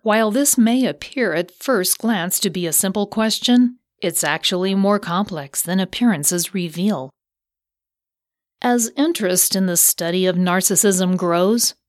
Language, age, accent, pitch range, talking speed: English, 40-59, American, 170-220 Hz, 135 wpm